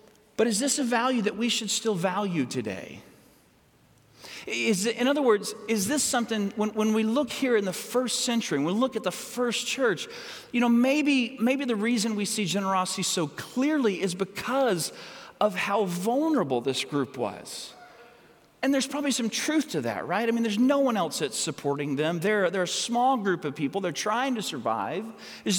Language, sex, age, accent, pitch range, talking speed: English, male, 40-59, American, 180-240 Hz, 195 wpm